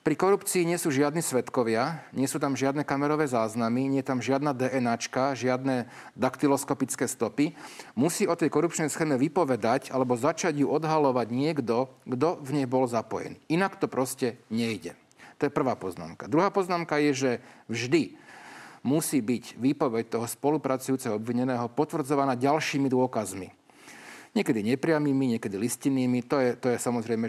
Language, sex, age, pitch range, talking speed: Slovak, male, 40-59, 120-155 Hz, 145 wpm